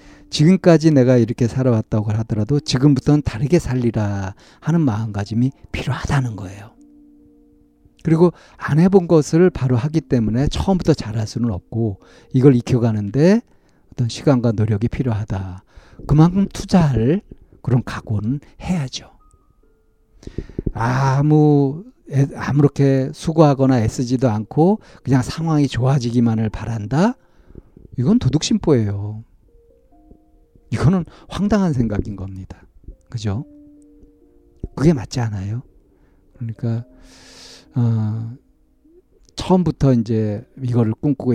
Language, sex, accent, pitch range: Korean, male, native, 110-145 Hz